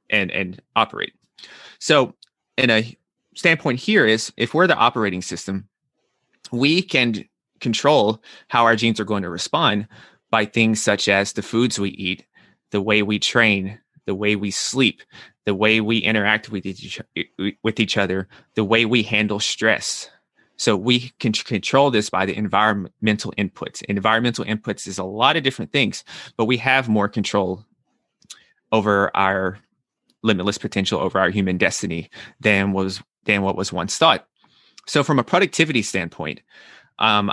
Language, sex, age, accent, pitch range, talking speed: English, male, 30-49, American, 100-115 Hz, 155 wpm